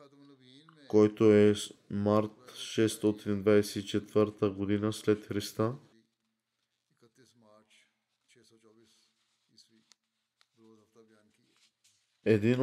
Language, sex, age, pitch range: Bulgarian, male, 20-39, 105-115 Hz